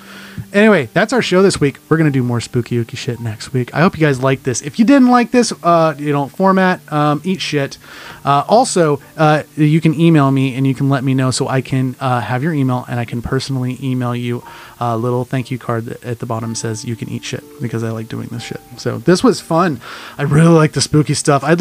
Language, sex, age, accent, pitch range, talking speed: English, male, 30-49, American, 125-160 Hz, 255 wpm